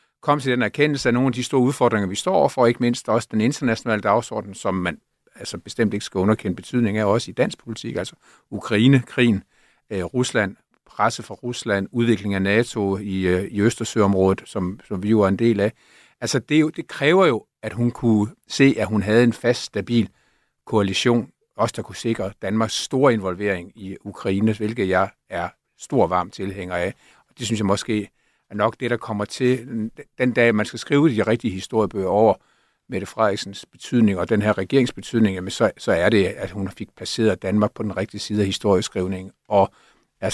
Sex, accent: male, native